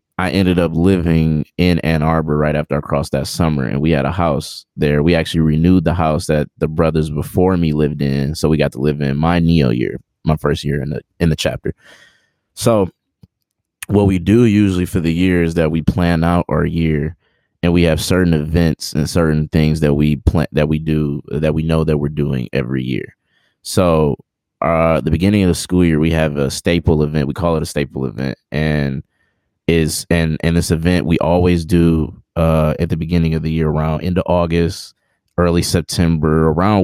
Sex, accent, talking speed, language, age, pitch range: male, American, 205 wpm, English, 20-39, 75-85 Hz